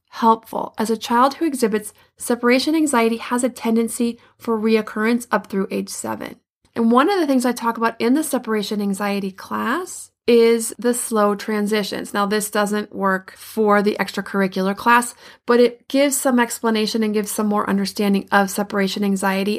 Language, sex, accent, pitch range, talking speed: English, female, American, 200-240 Hz, 170 wpm